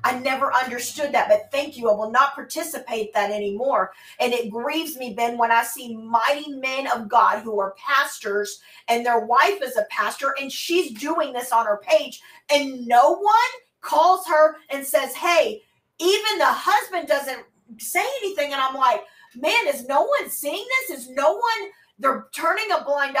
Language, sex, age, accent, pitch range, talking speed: English, female, 40-59, American, 240-325 Hz, 185 wpm